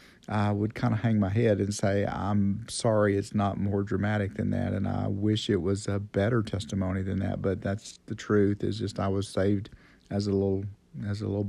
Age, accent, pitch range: 50-69, American, 100-115 Hz